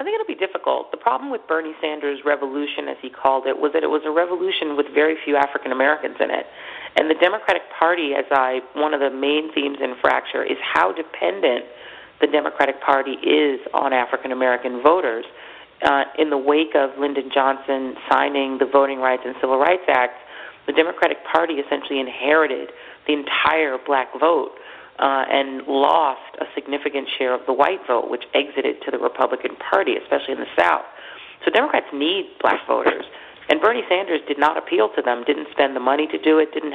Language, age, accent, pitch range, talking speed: English, 40-59, American, 135-155 Hz, 190 wpm